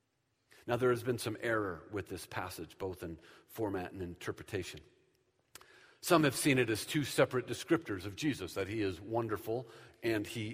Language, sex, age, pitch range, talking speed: English, male, 50-69, 120-200 Hz, 170 wpm